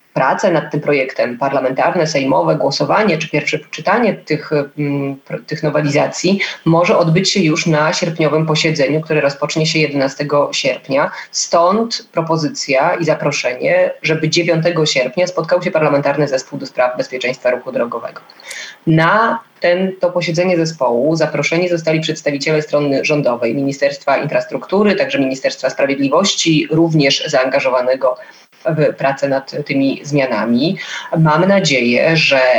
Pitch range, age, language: 145-175 Hz, 20-39, Polish